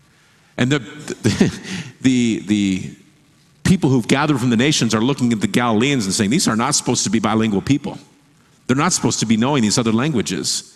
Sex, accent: male, American